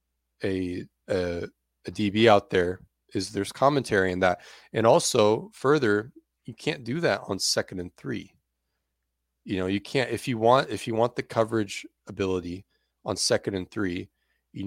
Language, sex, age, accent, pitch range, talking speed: English, male, 30-49, American, 85-100 Hz, 165 wpm